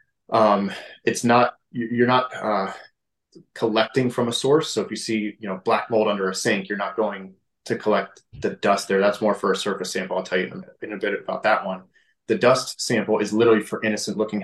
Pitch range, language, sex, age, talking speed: 105-125 Hz, English, male, 20-39, 215 wpm